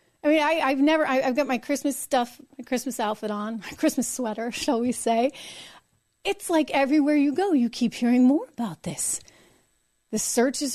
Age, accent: 40-59, American